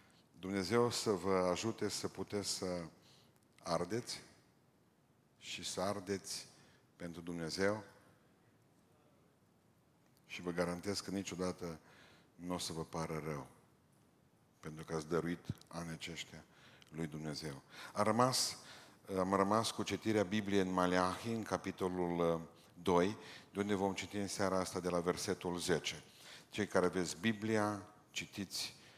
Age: 50-69